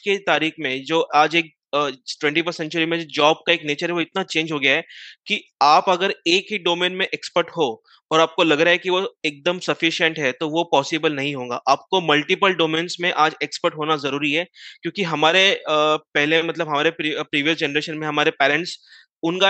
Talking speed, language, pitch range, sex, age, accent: 200 wpm, Hindi, 150-180 Hz, male, 20-39, native